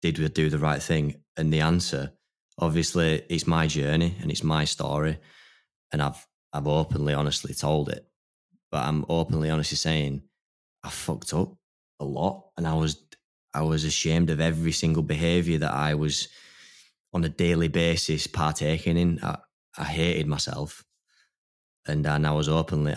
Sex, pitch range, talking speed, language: male, 75-80 Hz, 160 wpm, English